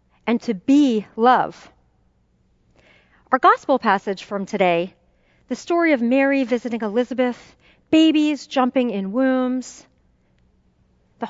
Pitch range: 200-300 Hz